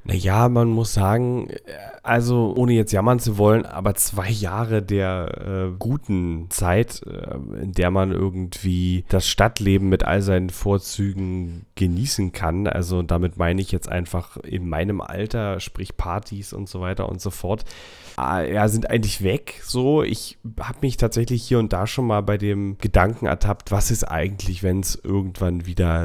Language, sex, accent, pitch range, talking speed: German, male, German, 95-115 Hz, 165 wpm